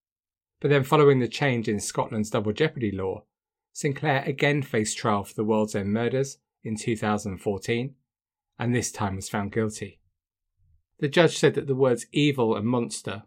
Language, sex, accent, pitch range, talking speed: English, male, British, 105-130 Hz, 165 wpm